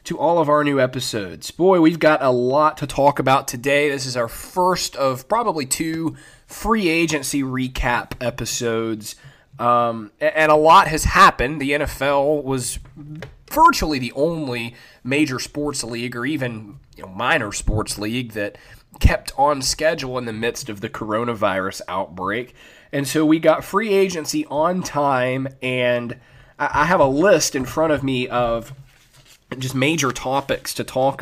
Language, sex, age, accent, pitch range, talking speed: English, male, 20-39, American, 120-150 Hz, 155 wpm